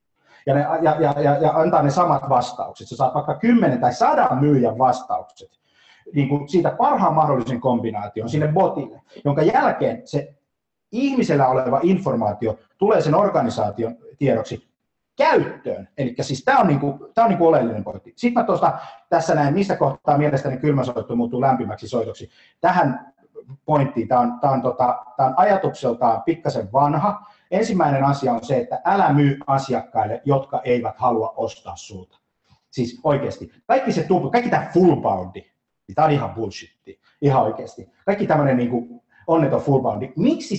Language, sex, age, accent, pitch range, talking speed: Finnish, male, 30-49, native, 125-170 Hz, 150 wpm